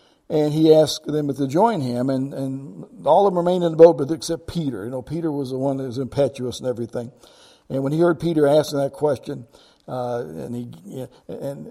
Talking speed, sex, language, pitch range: 210 wpm, male, English, 130-165 Hz